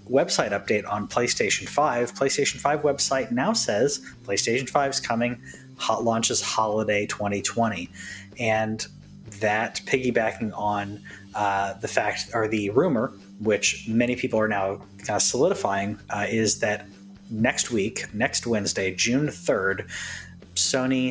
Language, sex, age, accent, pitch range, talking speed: English, male, 30-49, American, 100-120 Hz, 130 wpm